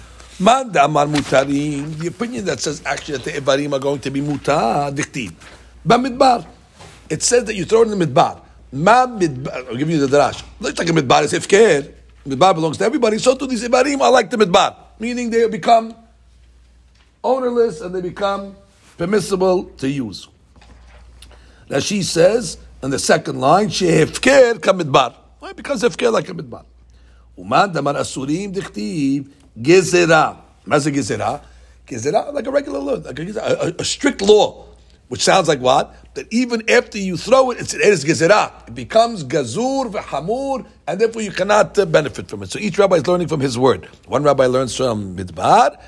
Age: 60-79